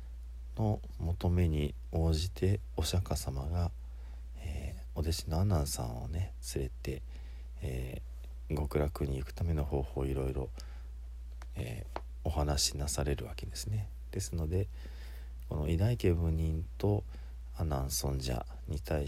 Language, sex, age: Japanese, male, 40-59